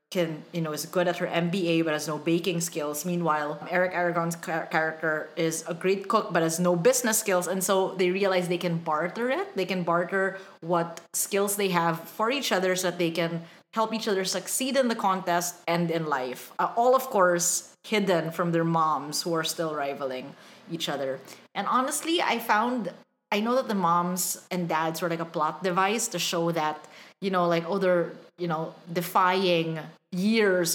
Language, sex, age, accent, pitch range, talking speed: English, female, 30-49, Filipino, 165-190 Hz, 195 wpm